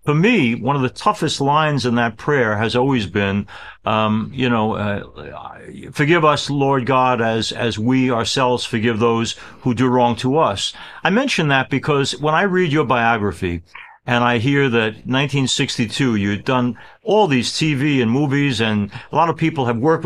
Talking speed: 185 wpm